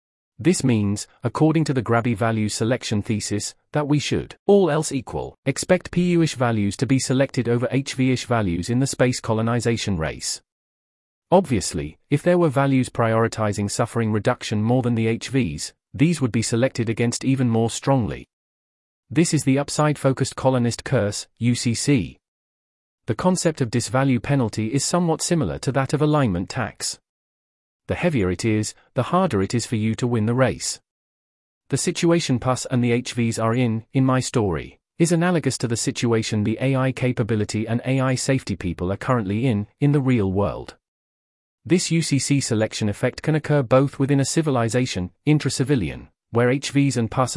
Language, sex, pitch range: English, male, 110-140 Hz